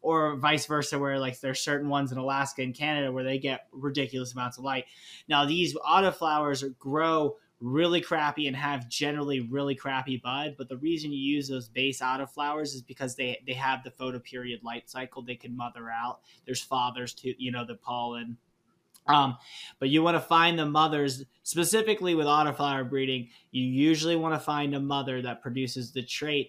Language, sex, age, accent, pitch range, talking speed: English, male, 20-39, American, 130-150 Hz, 185 wpm